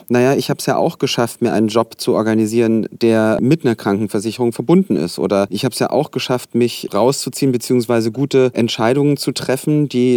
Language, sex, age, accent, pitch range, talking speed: German, male, 30-49, German, 110-130 Hz, 195 wpm